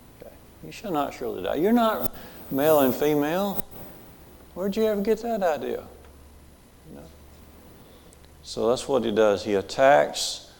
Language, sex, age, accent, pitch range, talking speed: English, male, 50-69, American, 105-135 Hz, 135 wpm